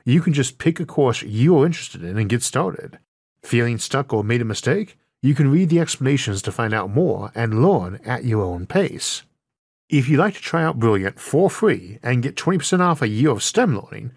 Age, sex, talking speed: 50-69, male, 215 wpm